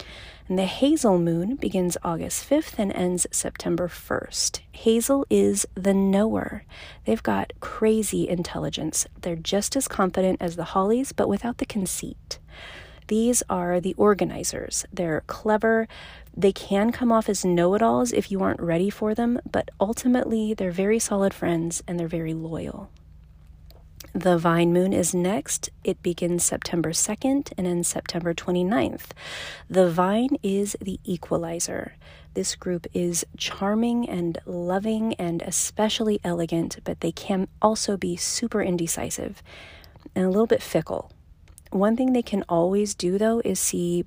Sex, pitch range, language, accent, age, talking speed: female, 170-215 Hz, English, American, 30-49, 145 wpm